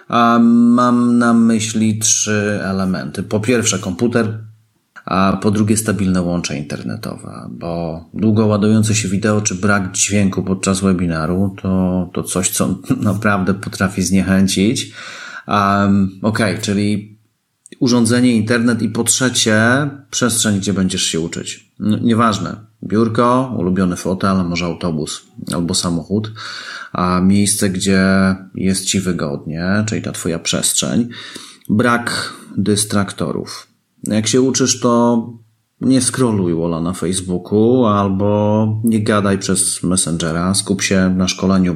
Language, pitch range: Polish, 95-115 Hz